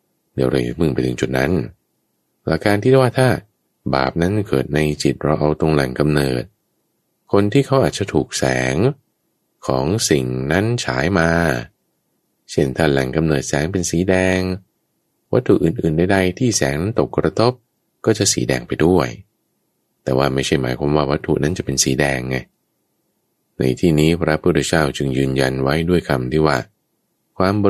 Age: 20-39